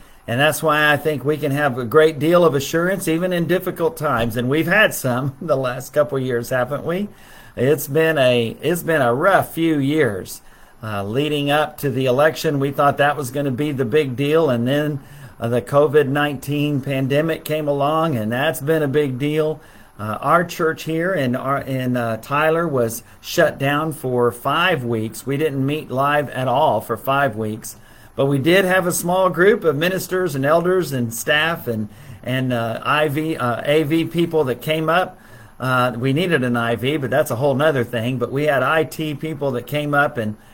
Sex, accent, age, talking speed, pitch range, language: male, American, 50-69, 195 wpm, 125-155 Hz, English